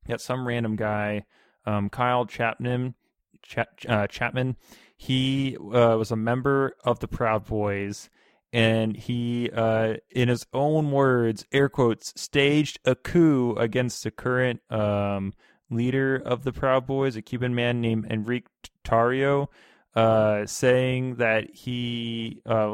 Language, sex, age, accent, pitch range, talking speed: English, male, 20-39, American, 110-130 Hz, 130 wpm